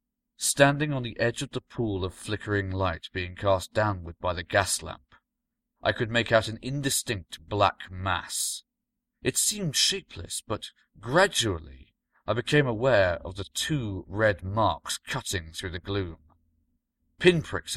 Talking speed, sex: 145 wpm, male